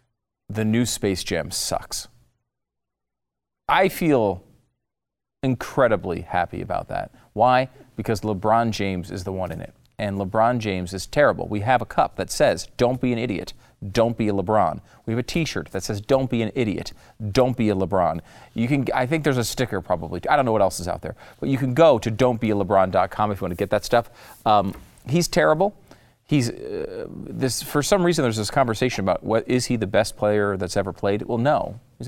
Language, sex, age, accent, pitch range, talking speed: English, male, 40-59, American, 100-130 Hz, 200 wpm